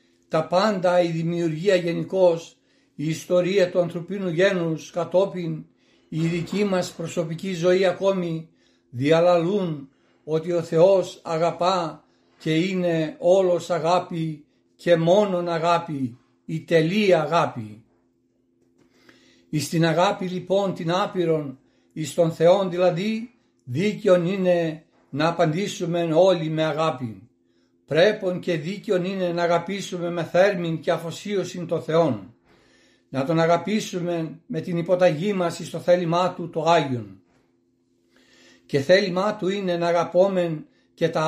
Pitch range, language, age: 145-180 Hz, Greek, 60-79